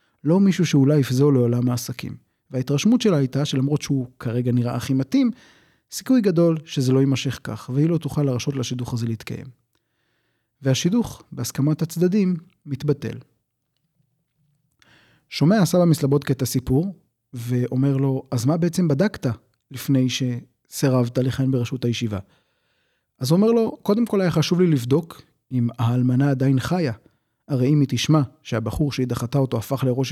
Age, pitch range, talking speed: 30-49, 125-160 Hz, 145 wpm